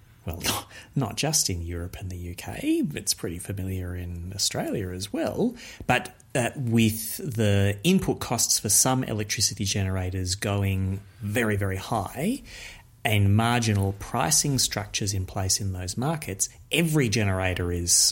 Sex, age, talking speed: male, 30-49, 135 wpm